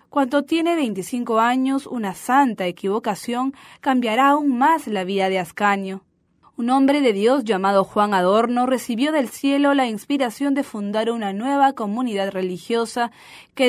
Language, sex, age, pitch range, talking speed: English, female, 10-29, 195-270 Hz, 145 wpm